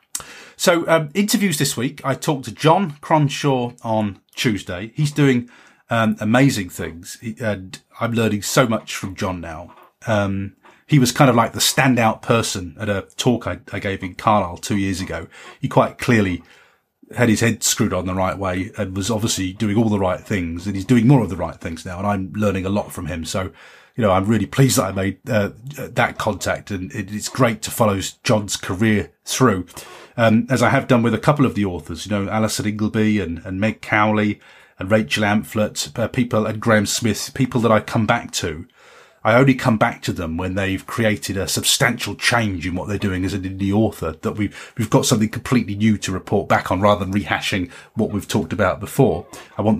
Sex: male